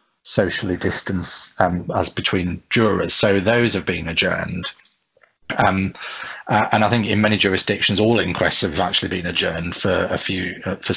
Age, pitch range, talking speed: 30-49, 90-105 Hz, 165 wpm